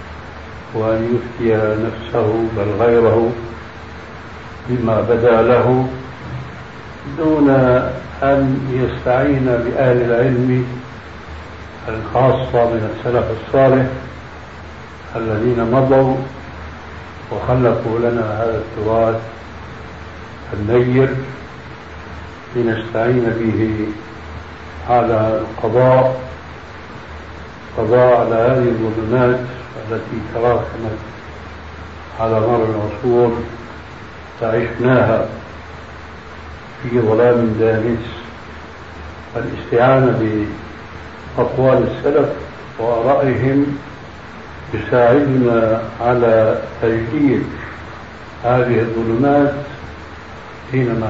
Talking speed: 60 wpm